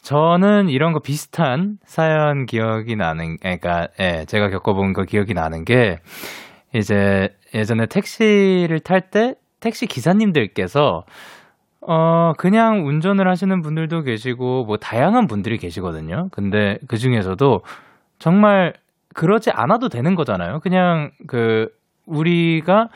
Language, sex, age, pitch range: Korean, male, 20-39, 105-170 Hz